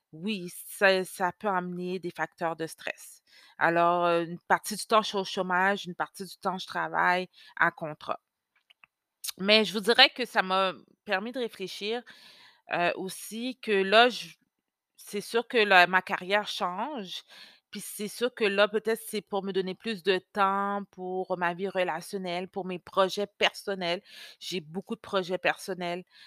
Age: 30-49